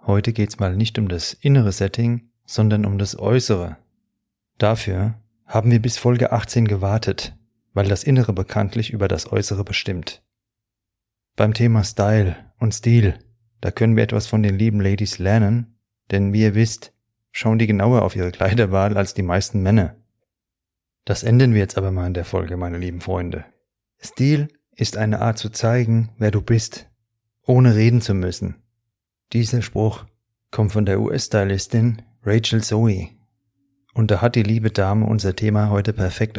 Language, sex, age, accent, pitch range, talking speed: German, male, 30-49, German, 100-115 Hz, 160 wpm